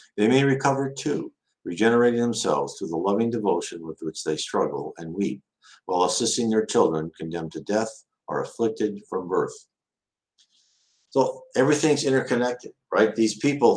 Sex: male